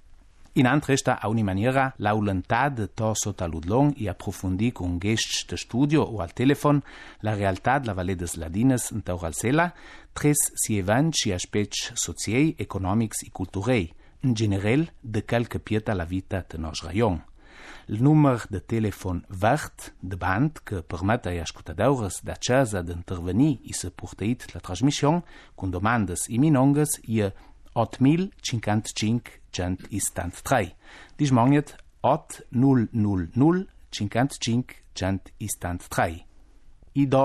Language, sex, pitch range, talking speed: Italian, male, 95-130 Hz, 120 wpm